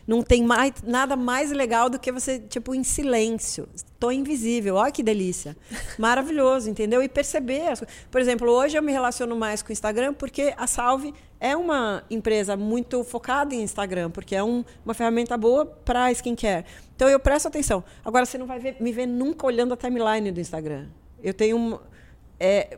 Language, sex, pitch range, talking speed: Portuguese, female, 215-255 Hz, 190 wpm